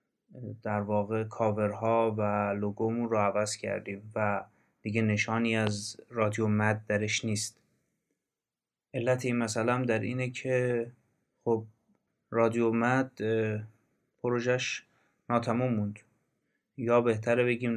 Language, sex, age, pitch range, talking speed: Persian, male, 30-49, 105-120 Hz, 110 wpm